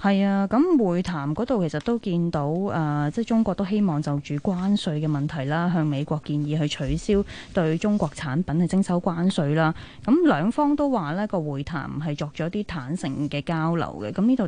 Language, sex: Chinese, female